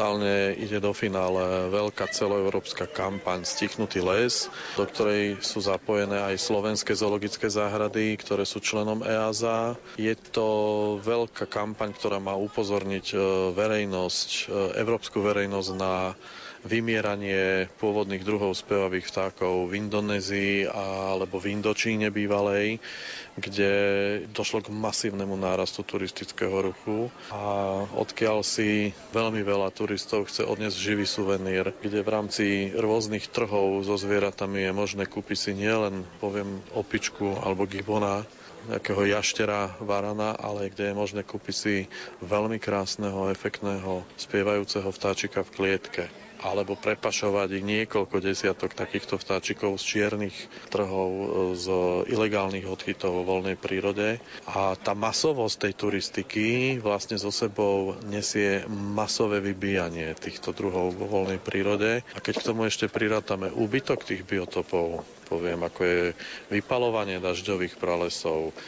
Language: Slovak